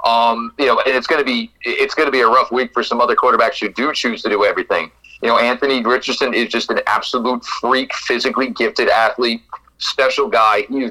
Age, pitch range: 40-59, 120-145 Hz